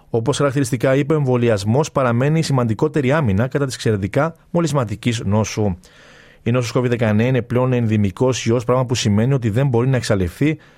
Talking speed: 155 wpm